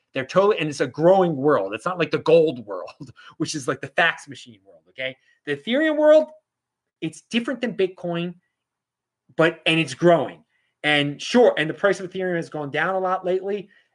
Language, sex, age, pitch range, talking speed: English, male, 30-49, 130-180 Hz, 200 wpm